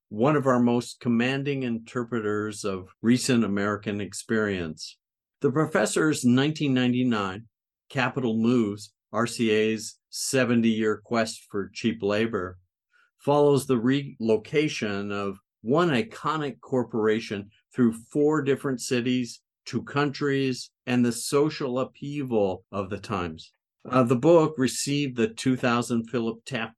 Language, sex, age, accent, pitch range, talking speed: English, male, 50-69, American, 105-130 Hz, 110 wpm